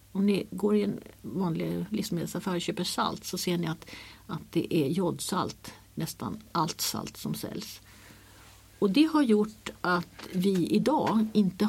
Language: Swedish